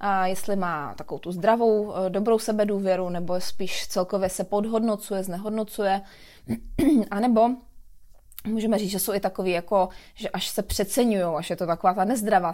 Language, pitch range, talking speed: Czech, 185-215 Hz, 155 wpm